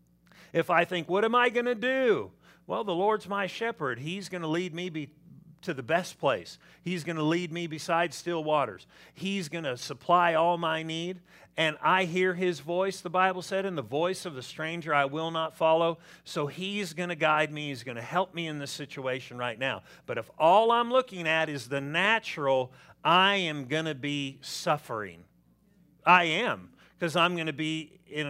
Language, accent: English, American